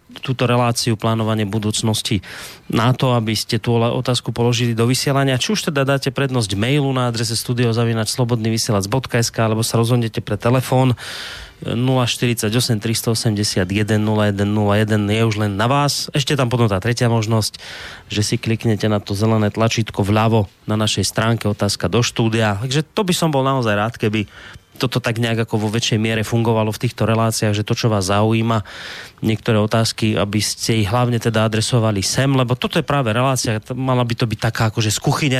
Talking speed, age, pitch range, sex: 175 wpm, 30-49, 110-130 Hz, male